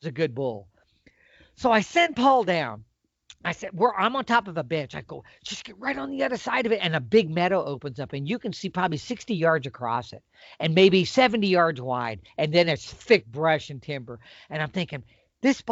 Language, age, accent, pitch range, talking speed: English, 50-69, American, 140-215 Hz, 230 wpm